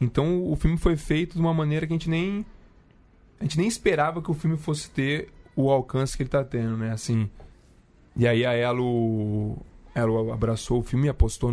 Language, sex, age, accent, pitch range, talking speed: Portuguese, male, 20-39, Brazilian, 115-145 Hz, 195 wpm